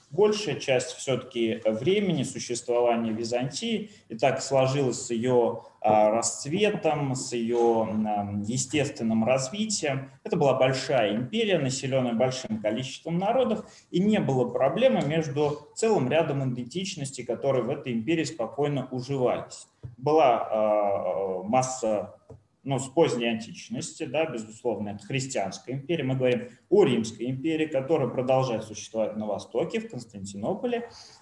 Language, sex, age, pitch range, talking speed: Russian, male, 20-39, 110-145 Hz, 115 wpm